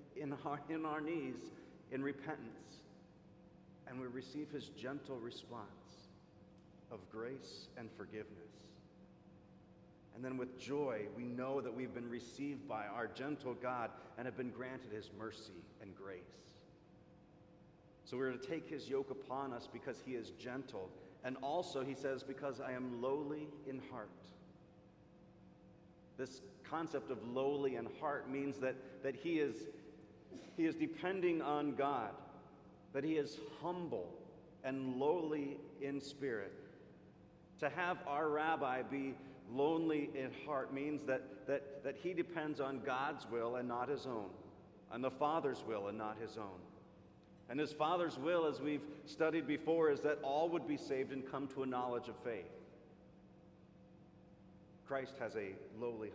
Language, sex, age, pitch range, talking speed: English, male, 40-59, 125-150 Hz, 150 wpm